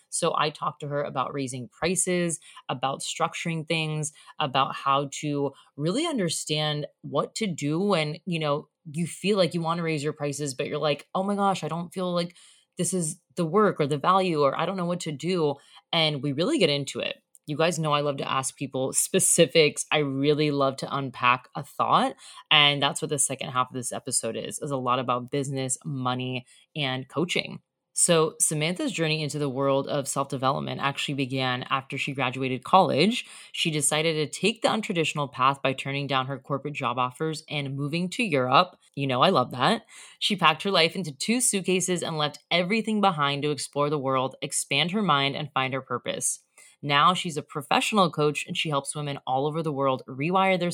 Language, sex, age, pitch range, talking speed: English, female, 20-39, 140-170 Hz, 200 wpm